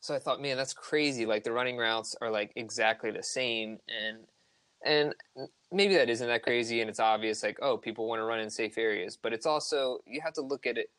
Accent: American